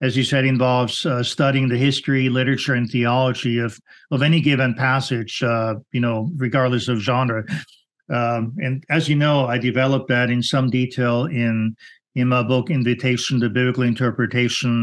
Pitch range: 115-130 Hz